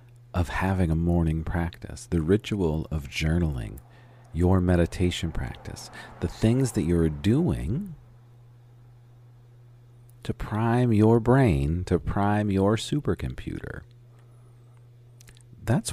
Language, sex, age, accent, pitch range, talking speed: English, male, 40-59, American, 85-120 Hz, 100 wpm